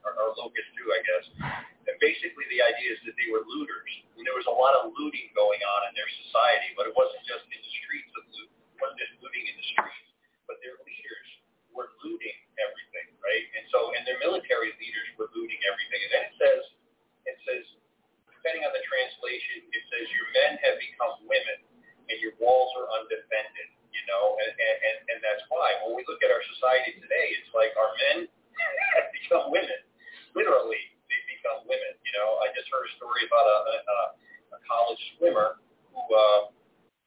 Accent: American